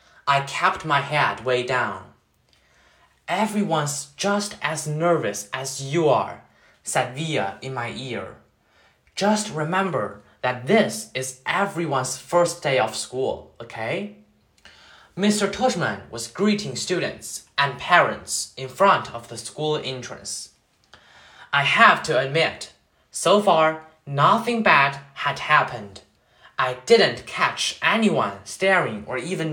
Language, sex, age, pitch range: Chinese, male, 20-39, 125-175 Hz